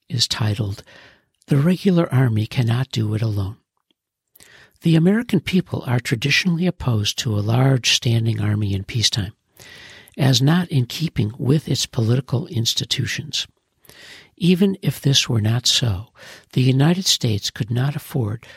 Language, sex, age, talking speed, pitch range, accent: English, male, 60-79, 135 wpm, 110-145 Hz, American